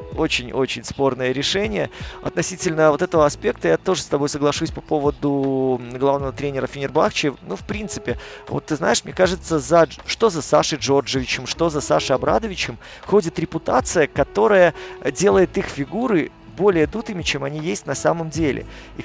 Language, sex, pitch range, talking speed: Russian, male, 140-170 Hz, 155 wpm